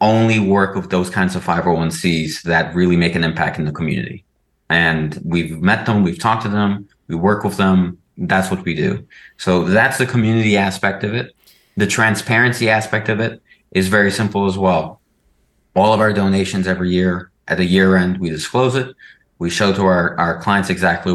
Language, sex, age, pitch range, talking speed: English, male, 30-49, 90-105 Hz, 195 wpm